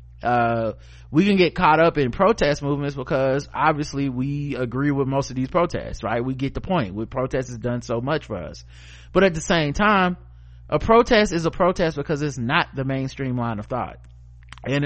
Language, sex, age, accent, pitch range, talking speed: English, male, 30-49, American, 115-160 Hz, 200 wpm